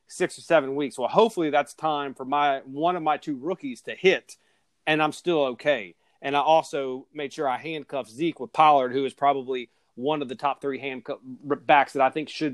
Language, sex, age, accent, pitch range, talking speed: English, male, 30-49, American, 135-175 Hz, 215 wpm